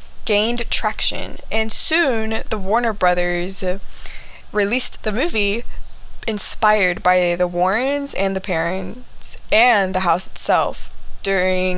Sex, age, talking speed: female, 20-39, 110 wpm